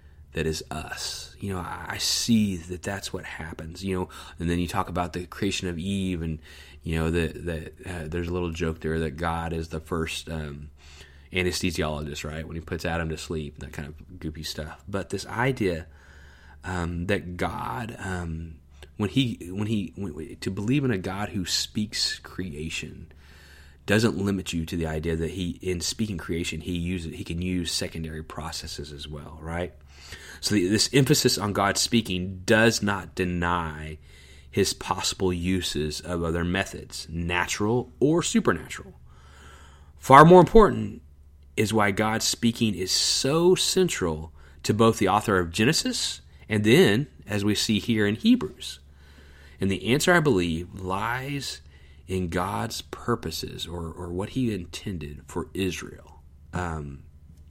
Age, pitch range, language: 30-49, 75-100 Hz, English